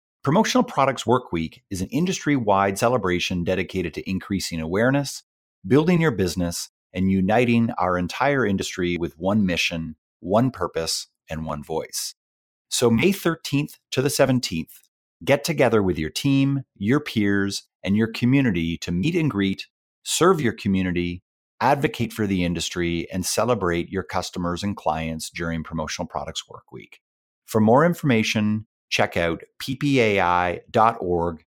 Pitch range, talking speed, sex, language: 85-120 Hz, 135 wpm, male, English